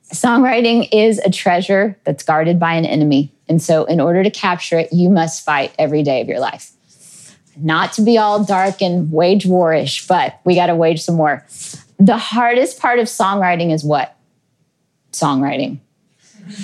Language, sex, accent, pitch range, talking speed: English, female, American, 160-205 Hz, 170 wpm